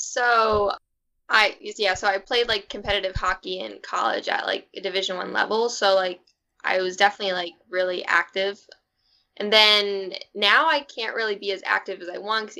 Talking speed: 180 wpm